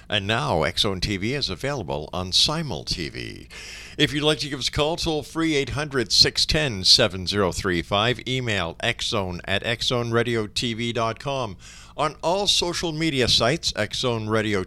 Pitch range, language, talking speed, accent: 95-140 Hz, English, 125 wpm, American